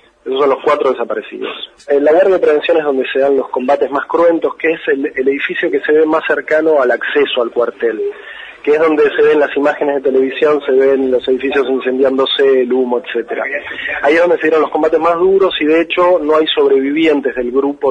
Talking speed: 220 wpm